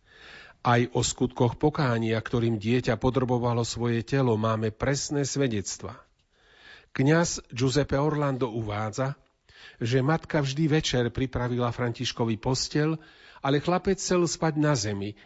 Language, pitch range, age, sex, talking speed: Slovak, 115-145 Hz, 40-59, male, 115 wpm